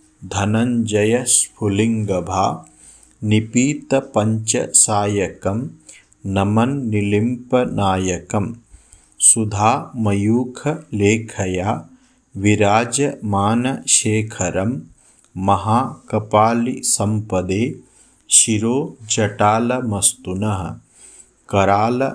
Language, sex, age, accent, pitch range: Hindi, male, 50-69, native, 100-120 Hz